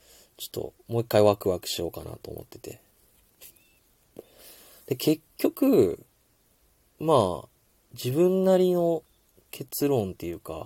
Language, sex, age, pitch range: Japanese, male, 20-39, 100-140 Hz